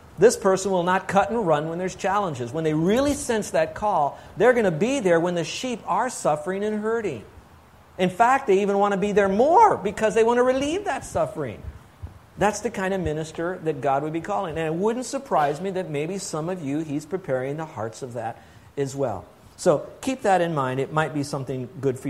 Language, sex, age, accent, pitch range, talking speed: English, male, 50-69, American, 135-185 Hz, 225 wpm